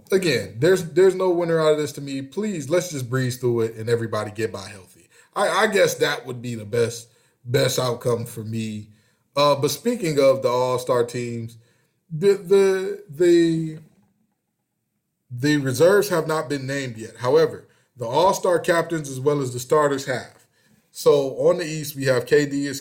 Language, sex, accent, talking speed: English, male, American, 185 wpm